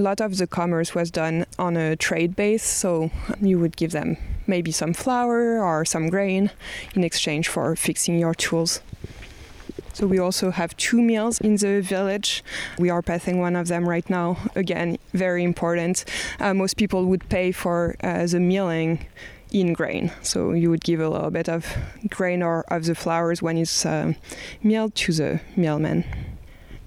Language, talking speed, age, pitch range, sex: English, 175 wpm, 20-39, 170-200 Hz, female